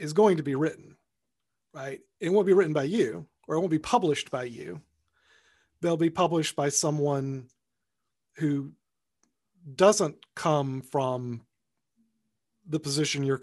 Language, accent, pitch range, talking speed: English, American, 130-155 Hz, 140 wpm